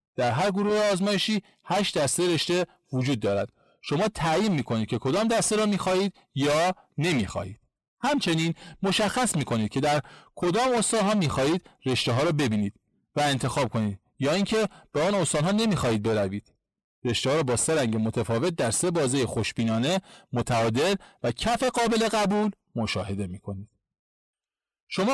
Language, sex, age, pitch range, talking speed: Persian, male, 40-59, 120-200 Hz, 155 wpm